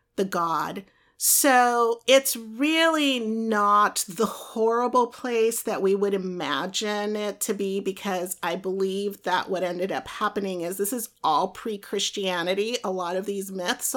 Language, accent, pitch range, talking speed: English, American, 180-210 Hz, 145 wpm